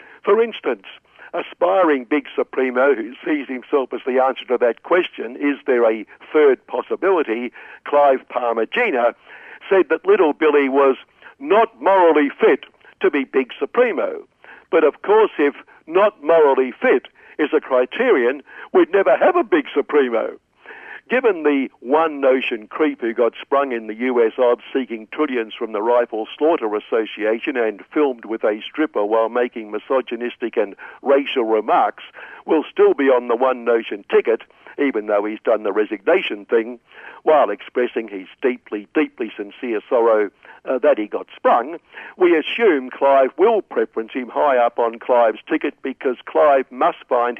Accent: British